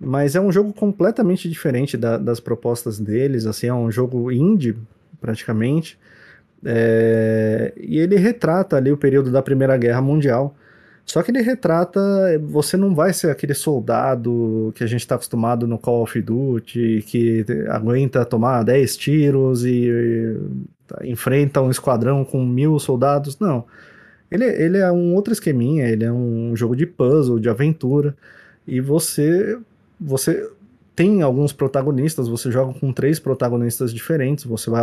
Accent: Brazilian